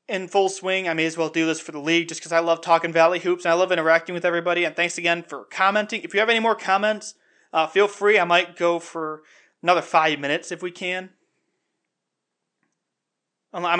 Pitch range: 165-190 Hz